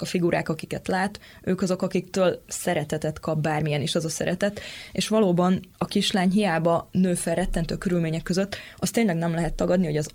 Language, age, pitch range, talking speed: Hungarian, 20-39, 160-190 Hz, 185 wpm